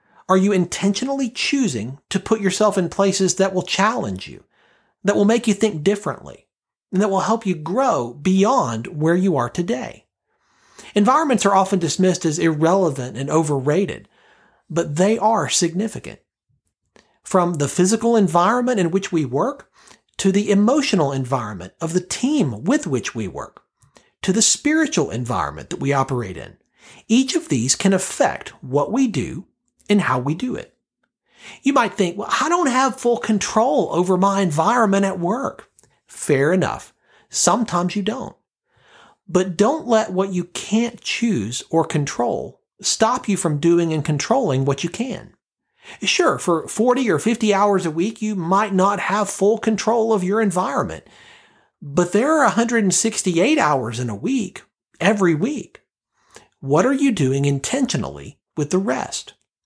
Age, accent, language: 40-59, American, English